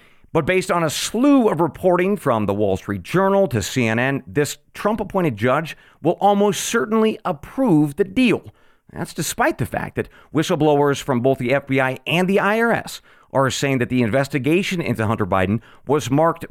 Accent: American